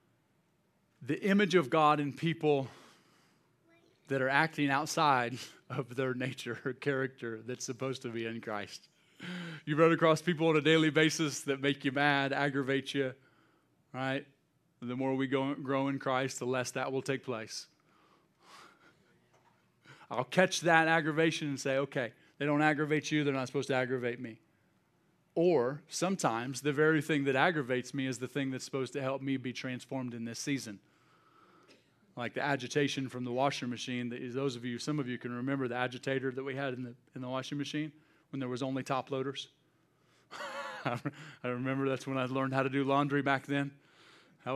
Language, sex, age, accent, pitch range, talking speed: English, male, 30-49, American, 130-150 Hz, 175 wpm